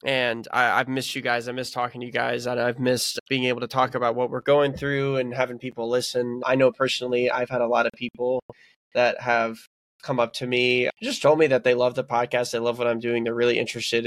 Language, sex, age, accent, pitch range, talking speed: English, male, 20-39, American, 120-140 Hz, 250 wpm